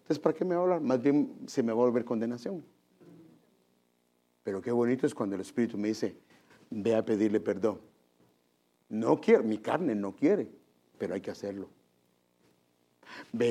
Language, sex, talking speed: English, male, 175 wpm